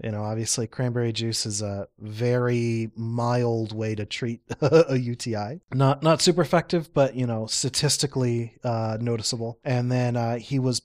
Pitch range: 115-135 Hz